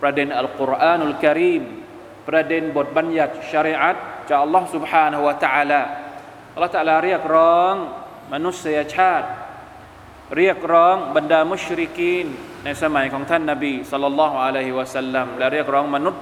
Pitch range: 145-185 Hz